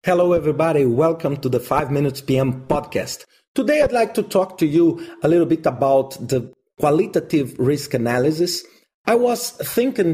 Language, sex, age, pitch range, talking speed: English, male, 40-59, 145-190 Hz, 160 wpm